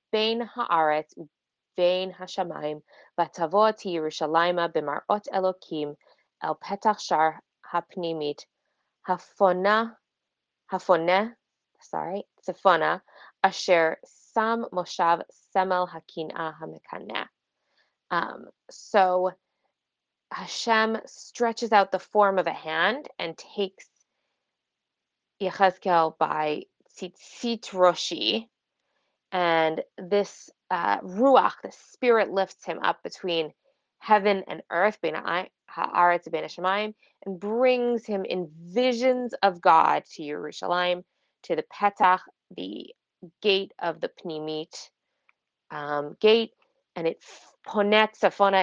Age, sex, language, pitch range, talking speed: 20-39, female, English, 165-210 Hz, 90 wpm